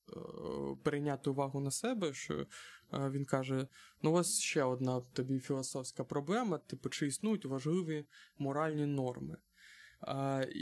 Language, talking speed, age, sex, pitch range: Ukrainian, 125 wpm, 20-39, male, 135-155 Hz